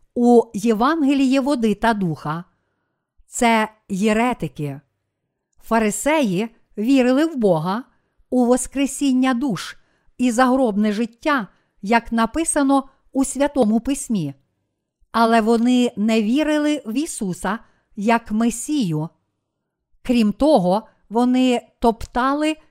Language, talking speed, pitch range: Ukrainian, 90 wpm, 215-255 Hz